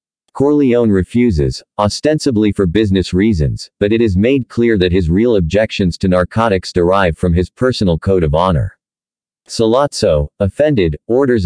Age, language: 50-69, English